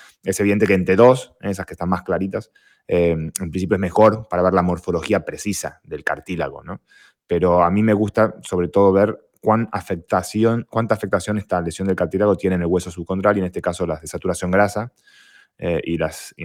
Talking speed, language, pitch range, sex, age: 210 wpm, Spanish, 85-105 Hz, male, 20-39